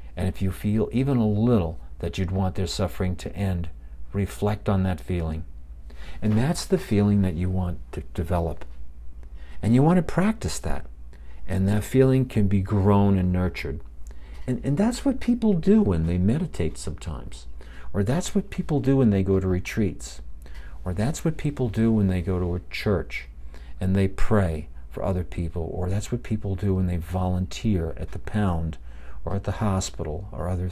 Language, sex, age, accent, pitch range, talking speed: English, male, 50-69, American, 75-105 Hz, 185 wpm